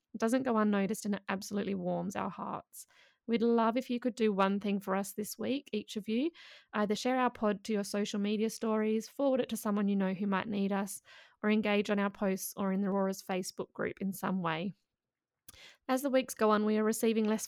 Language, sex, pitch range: English, female, 200-230 Hz